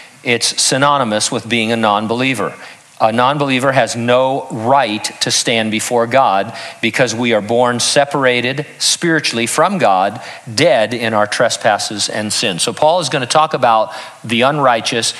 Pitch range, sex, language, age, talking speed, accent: 115-155 Hz, male, English, 50-69, 145 wpm, American